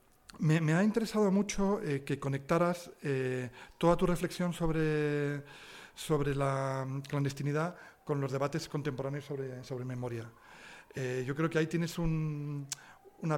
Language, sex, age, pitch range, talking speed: Spanish, male, 40-59, 140-175 Hz, 140 wpm